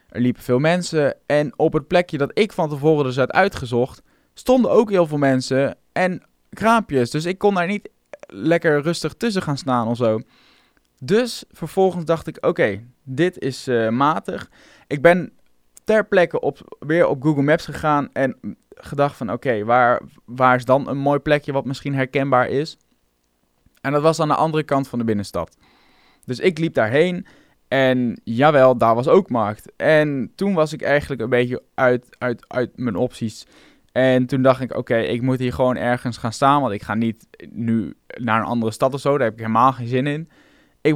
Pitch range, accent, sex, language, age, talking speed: 125-165 Hz, Dutch, male, Dutch, 20-39, 195 wpm